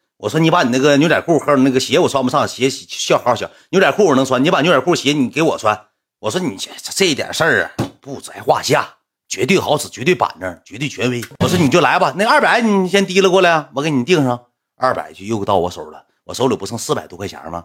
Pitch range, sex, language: 95-135 Hz, male, Chinese